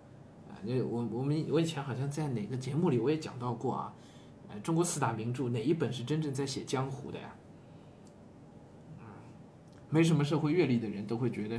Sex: male